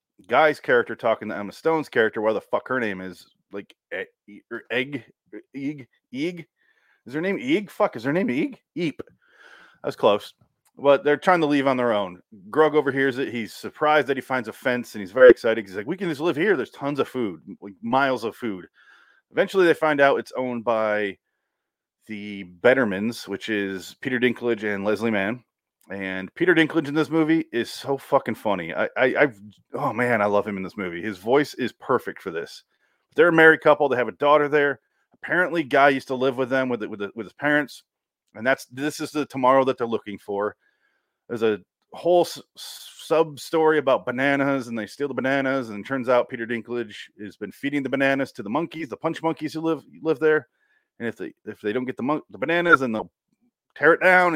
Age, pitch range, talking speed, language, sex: 30-49, 110-155 Hz, 215 wpm, English, male